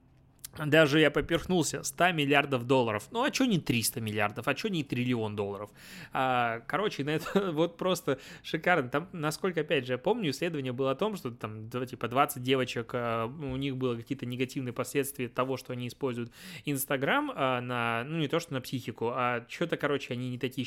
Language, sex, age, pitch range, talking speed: Russian, male, 20-39, 120-150 Hz, 180 wpm